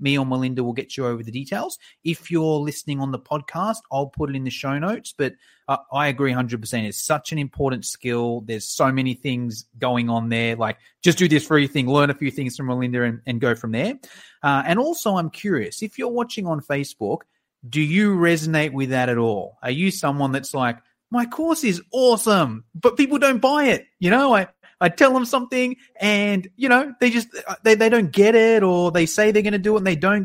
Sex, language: male, English